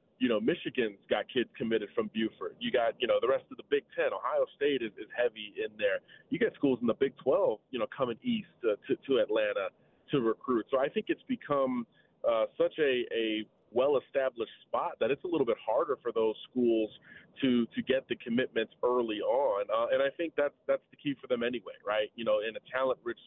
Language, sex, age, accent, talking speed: English, male, 30-49, American, 220 wpm